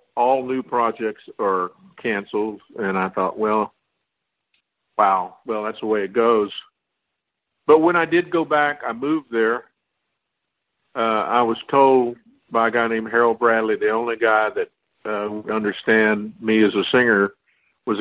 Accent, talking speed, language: American, 155 wpm, English